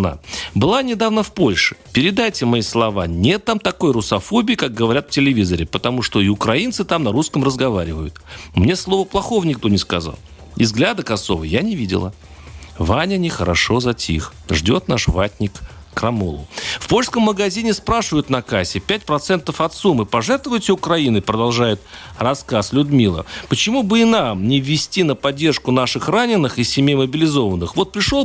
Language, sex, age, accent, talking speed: Russian, male, 40-59, native, 150 wpm